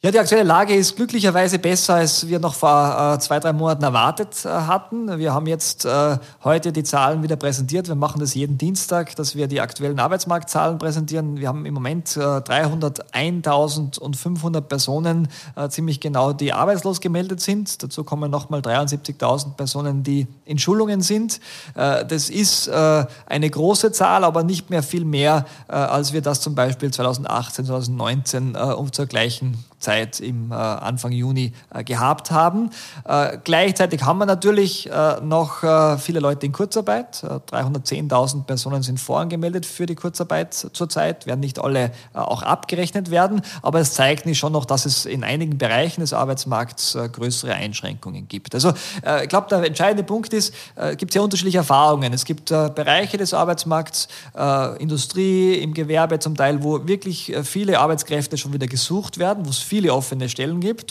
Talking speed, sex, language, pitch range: 165 wpm, male, German, 135-175 Hz